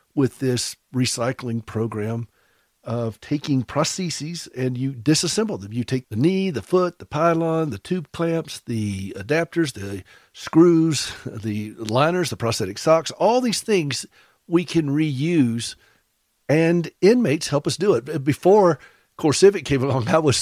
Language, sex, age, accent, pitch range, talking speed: English, male, 50-69, American, 120-150 Hz, 145 wpm